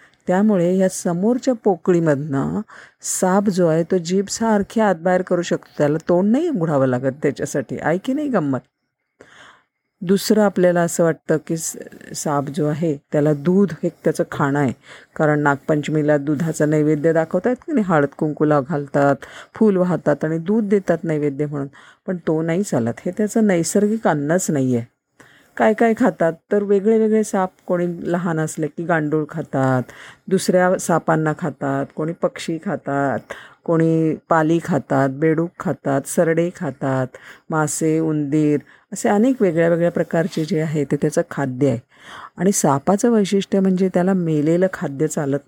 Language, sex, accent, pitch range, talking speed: Marathi, female, native, 150-195 Hz, 135 wpm